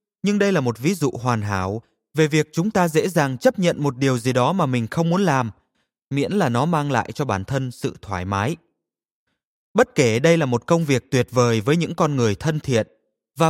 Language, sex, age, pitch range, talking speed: Vietnamese, male, 20-39, 120-165 Hz, 230 wpm